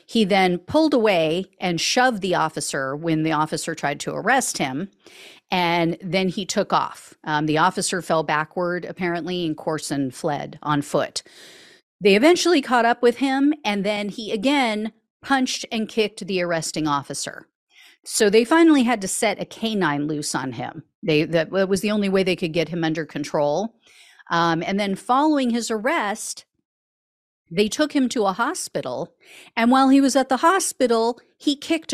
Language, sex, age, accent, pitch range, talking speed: English, female, 40-59, American, 180-280 Hz, 170 wpm